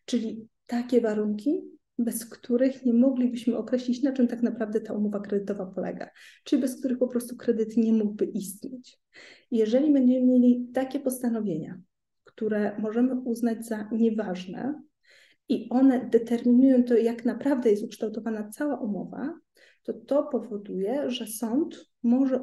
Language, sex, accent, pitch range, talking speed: Polish, female, native, 220-255 Hz, 135 wpm